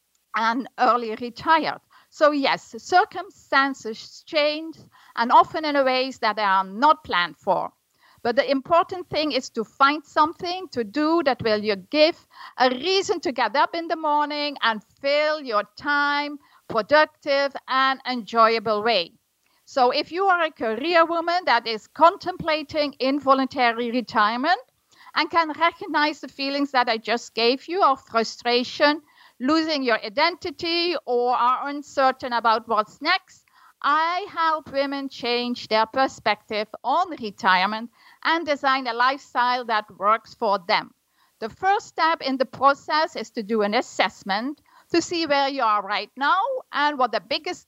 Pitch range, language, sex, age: 235-320 Hz, English, female, 50-69